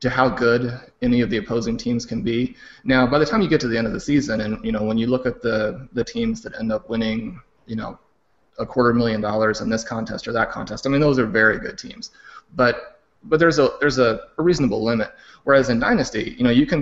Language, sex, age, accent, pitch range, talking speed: English, male, 30-49, American, 110-130 Hz, 255 wpm